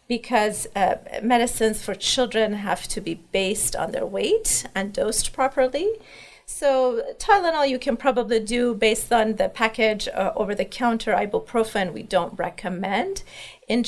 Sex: female